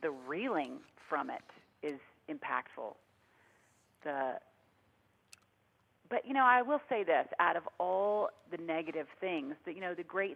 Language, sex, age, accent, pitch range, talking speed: English, female, 40-59, American, 130-175 Hz, 145 wpm